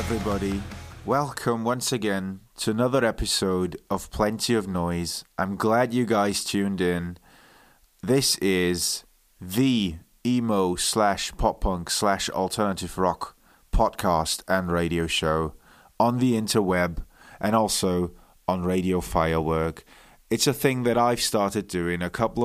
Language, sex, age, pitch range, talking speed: English, male, 30-49, 90-110 Hz, 130 wpm